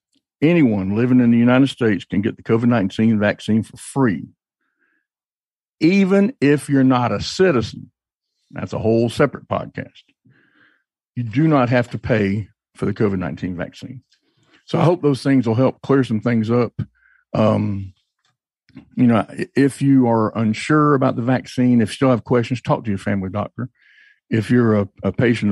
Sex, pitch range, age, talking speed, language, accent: male, 105-130 Hz, 50-69, 165 wpm, English, American